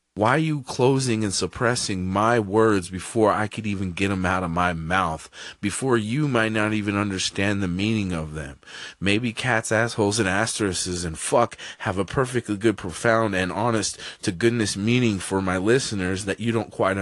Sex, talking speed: male, 185 wpm